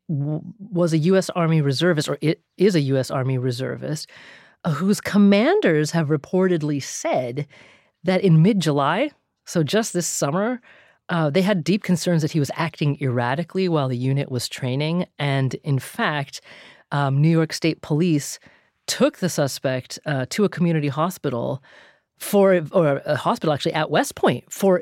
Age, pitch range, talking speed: 30-49, 150-225 Hz, 150 wpm